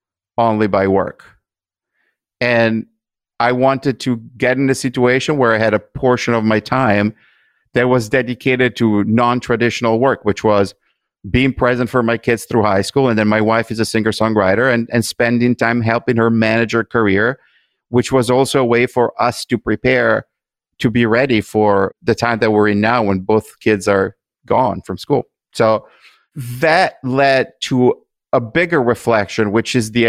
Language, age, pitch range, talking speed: English, 50-69, 110-125 Hz, 170 wpm